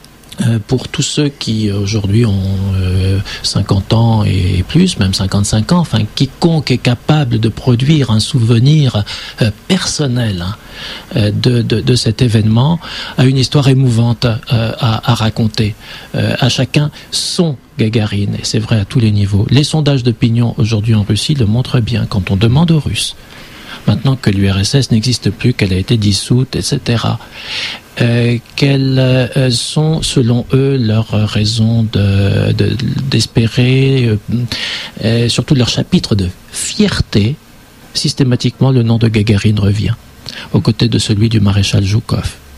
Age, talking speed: 60-79, 145 wpm